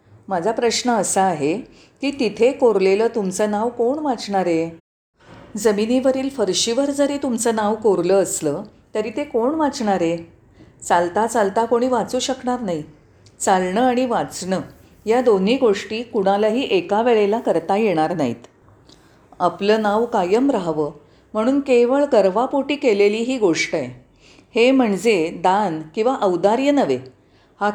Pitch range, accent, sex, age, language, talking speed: 175-240 Hz, native, female, 40-59, Marathi, 125 wpm